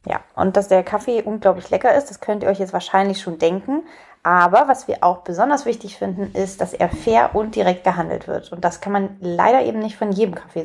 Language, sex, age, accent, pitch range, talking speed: German, female, 30-49, German, 185-235 Hz, 230 wpm